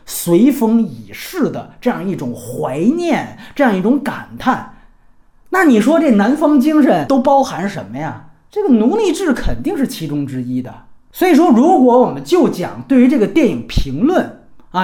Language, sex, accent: Chinese, male, native